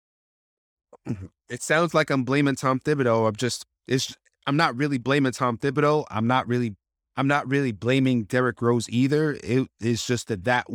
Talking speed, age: 175 wpm, 30-49